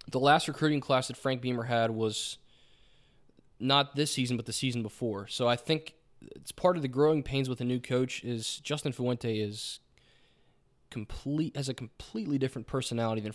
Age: 20-39